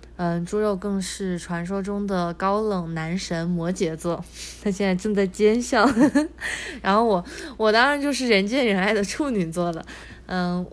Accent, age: native, 20-39